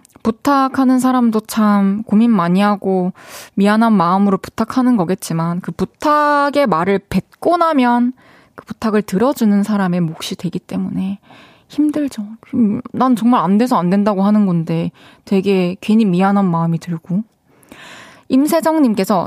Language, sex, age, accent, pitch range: Korean, female, 20-39, native, 195-270 Hz